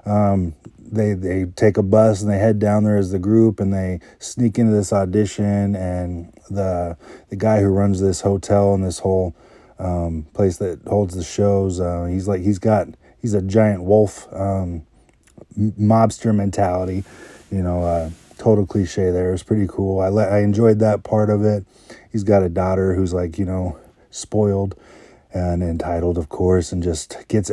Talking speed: 185 wpm